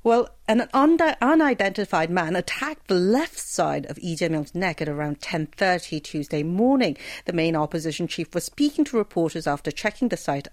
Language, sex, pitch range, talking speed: English, female, 155-215 Hz, 160 wpm